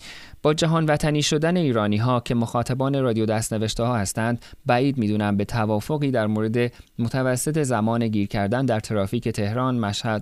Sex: male